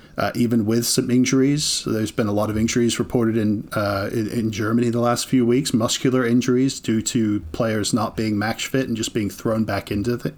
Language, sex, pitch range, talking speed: English, male, 110-140 Hz, 215 wpm